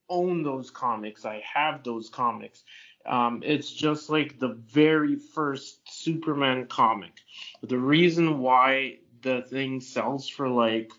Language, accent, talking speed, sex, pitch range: English, American, 130 wpm, male, 125-145 Hz